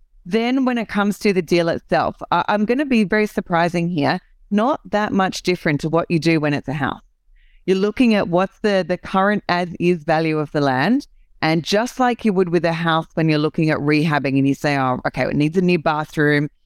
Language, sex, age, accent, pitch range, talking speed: English, female, 30-49, Australian, 150-195 Hz, 225 wpm